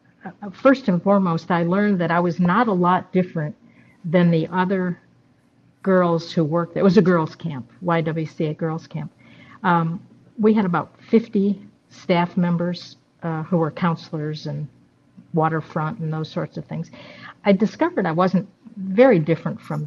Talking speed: 155 wpm